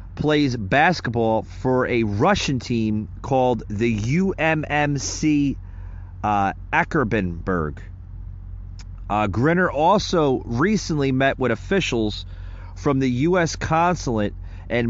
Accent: American